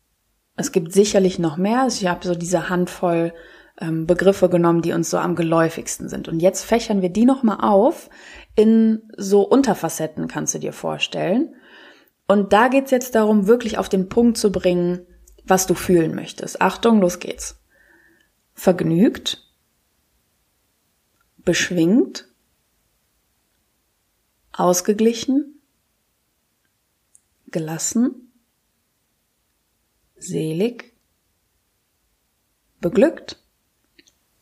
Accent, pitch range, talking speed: German, 165-220 Hz, 105 wpm